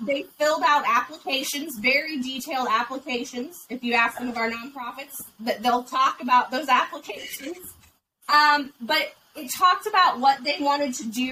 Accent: American